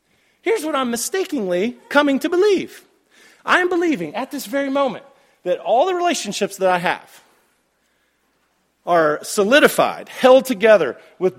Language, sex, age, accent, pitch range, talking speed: English, male, 40-59, American, 205-300 Hz, 135 wpm